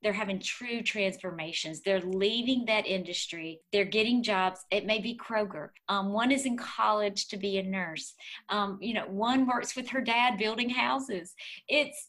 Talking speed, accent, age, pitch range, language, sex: 175 wpm, American, 40-59, 185-215 Hz, English, female